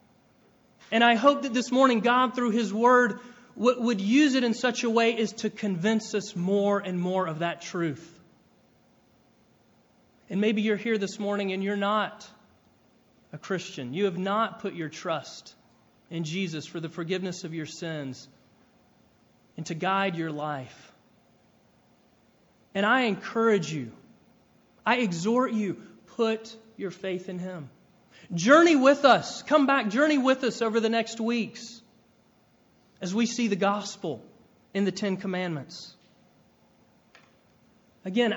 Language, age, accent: English, 30-49, American